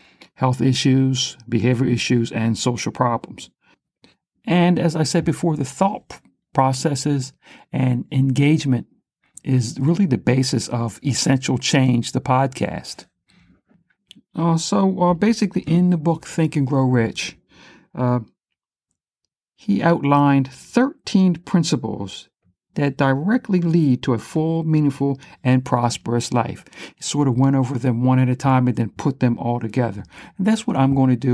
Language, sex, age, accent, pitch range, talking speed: English, male, 60-79, American, 125-155 Hz, 145 wpm